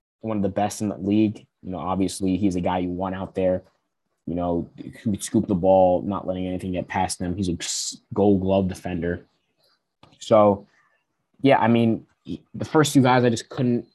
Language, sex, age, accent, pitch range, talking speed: English, male, 20-39, American, 90-110 Hz, 200 wpm